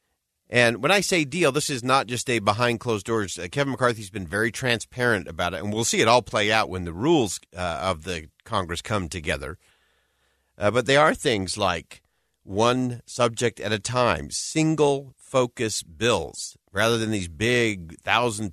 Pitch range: 95-130 Hz